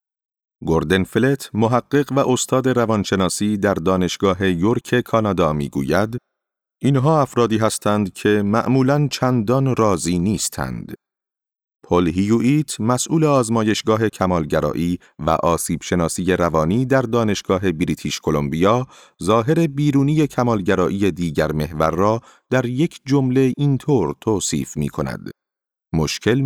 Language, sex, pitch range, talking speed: Persian, male, 95-135 Hz, 95 wpm